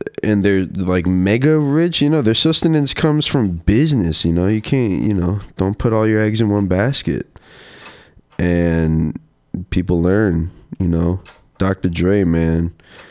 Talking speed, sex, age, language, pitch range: 155 wpm, male, 20-39, English, 85-110 Hz